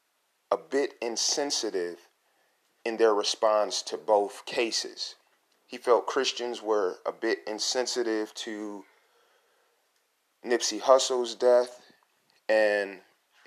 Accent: American